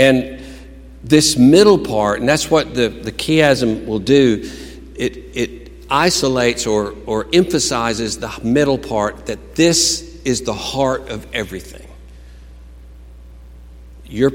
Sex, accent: male, American